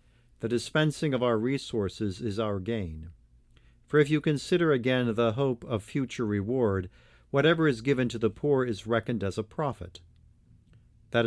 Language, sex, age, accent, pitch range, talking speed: English, male, 50-69, American, 110-130 Hz, 160 wpm